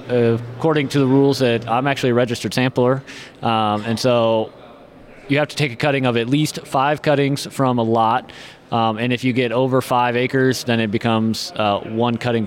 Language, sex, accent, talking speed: English, male, American, 195 wpm